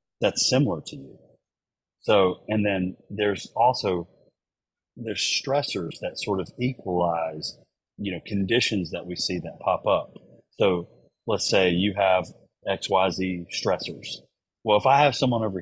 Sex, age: male, 30-49